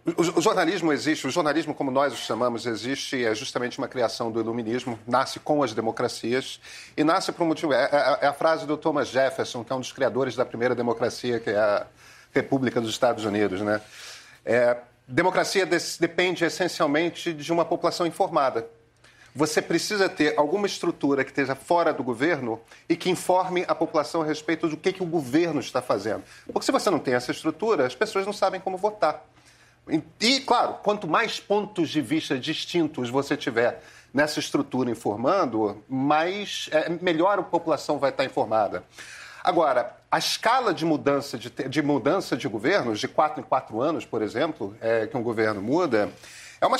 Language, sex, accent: Portuguese, male, Brazilian